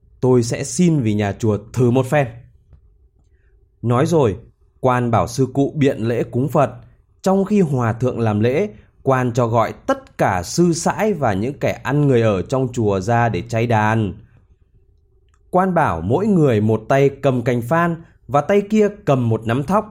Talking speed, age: 180 wpm, 20-39